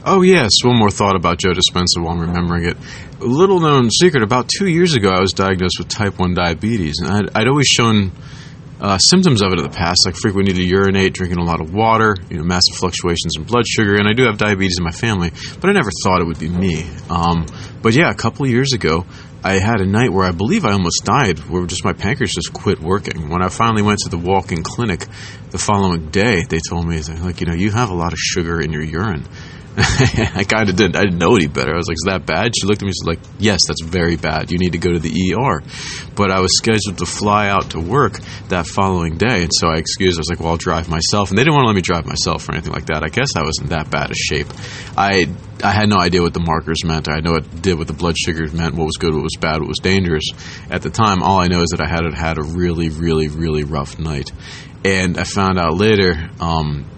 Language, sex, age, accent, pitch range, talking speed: English, male, 30-49, American, 85-105 Hz, 265 wpm